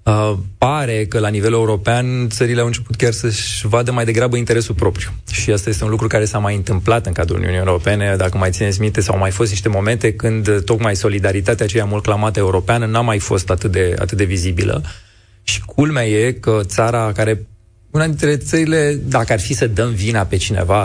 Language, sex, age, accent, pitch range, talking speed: Romanian, male, 20-39, native, 100-120 Hz, 205 wpm